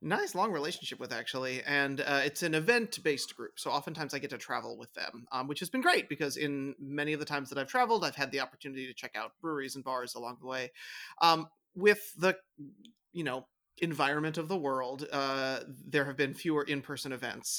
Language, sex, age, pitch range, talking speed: English, male, 30-49, 140-180 Hz, 220 wpm